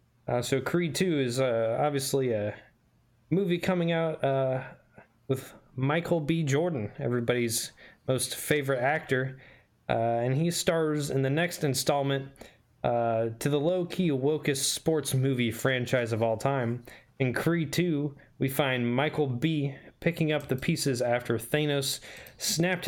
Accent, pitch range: American, 115-145 Hz